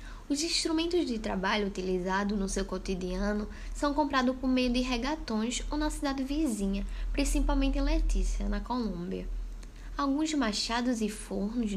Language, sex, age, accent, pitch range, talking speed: Portuguese, female, 10-29, Brazilian, 210-290 Hz, 140 wpm